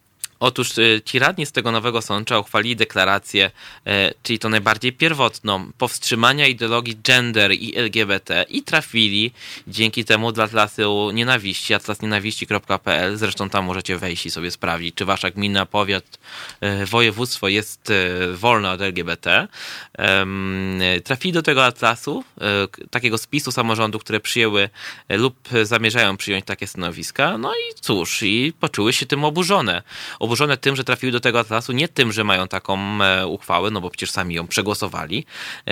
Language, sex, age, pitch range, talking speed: Polish, male, 20-39, 100-120 Hz, 140 wpm